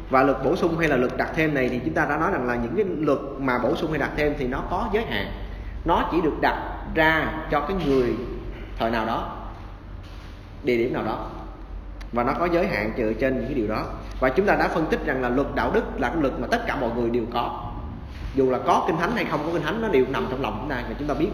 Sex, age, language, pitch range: male, 20-39, Vietnamese, 110-155 Hz